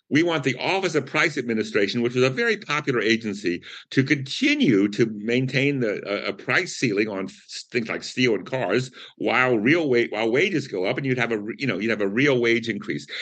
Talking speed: 215 wpm